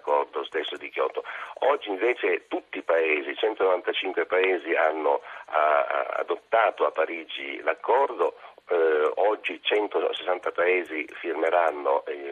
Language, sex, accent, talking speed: Italian, male, native, 90 wpm